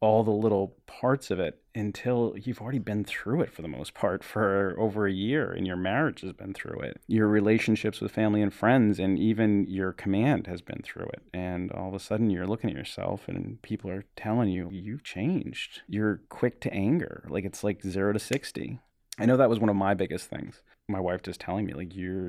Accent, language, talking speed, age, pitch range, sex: American, English, 225 wpm, 30-49, 95-110 Hz, male